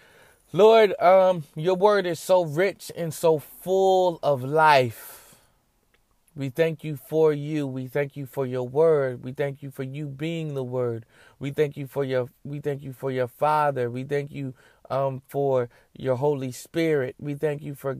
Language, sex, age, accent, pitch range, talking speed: English, male, 30-49, American, 135-155 Hz, 180 wpm